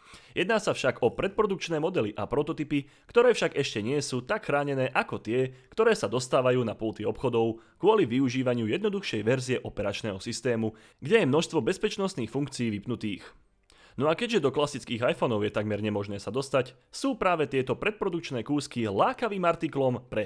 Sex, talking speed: male, 160 wpm